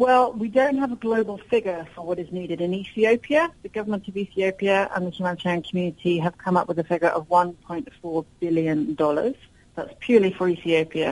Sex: female